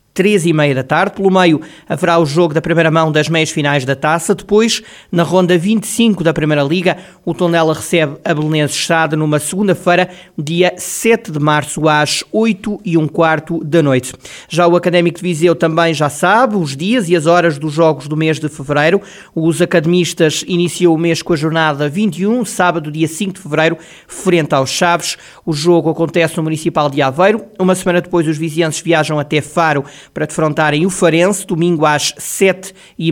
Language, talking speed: Portuguese, 185 wpm